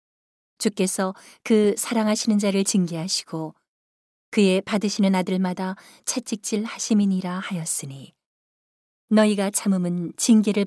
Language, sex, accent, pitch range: Korean, female, native, 180-210 Hz